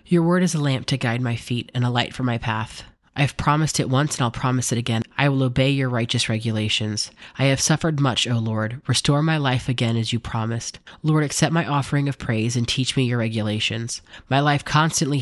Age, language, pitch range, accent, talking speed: 30-49, English, 115-140 Hz, American, 230 wpm